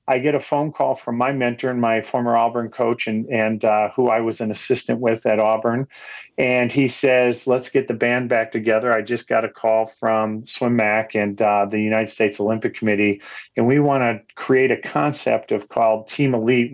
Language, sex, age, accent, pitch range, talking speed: English, male, 40-59, American, 110-130 Hz, 210 wpm